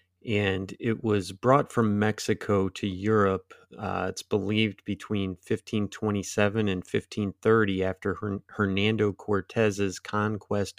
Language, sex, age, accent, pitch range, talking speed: English, male, 30-49, American, 95-105 Hz, 110 wpm